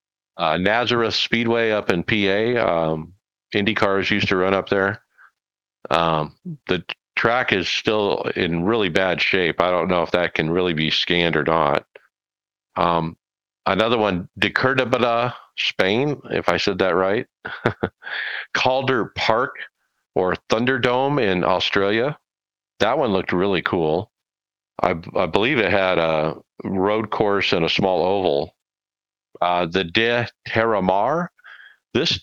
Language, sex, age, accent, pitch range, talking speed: English, male, 40-59, American, 85-115 Hz, 135 wpm